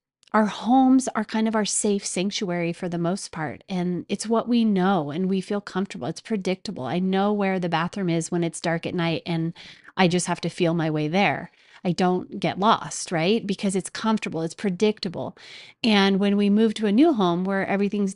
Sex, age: female, 30-49